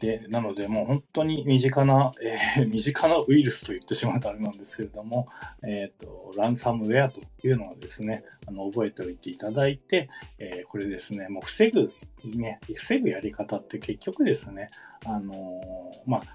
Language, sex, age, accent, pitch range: Japanese, male, 20-39, native, 110-145 Hz